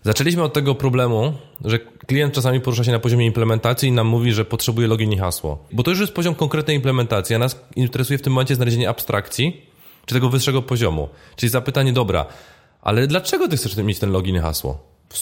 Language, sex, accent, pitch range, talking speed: Polish, male, native, 115-150 Hz, 205 wpm